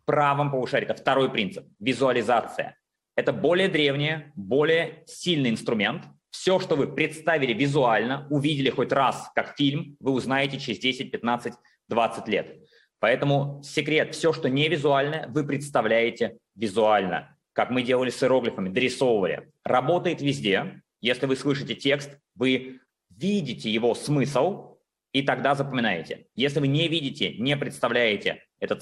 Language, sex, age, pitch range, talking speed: Russian, male, 20-39, 135-165 Hz, 135 wpm